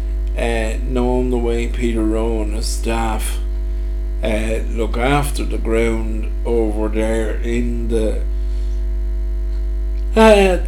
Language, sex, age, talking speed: English, male, 50-69, 105 wpm